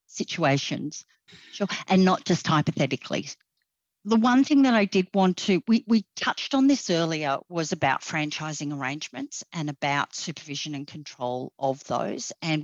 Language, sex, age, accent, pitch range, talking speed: English, female, 50-69, Australian, 140-180 Hz, 150 wpm